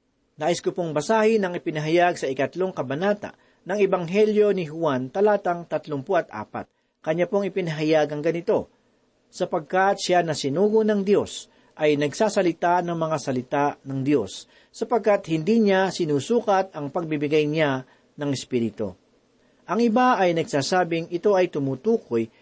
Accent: native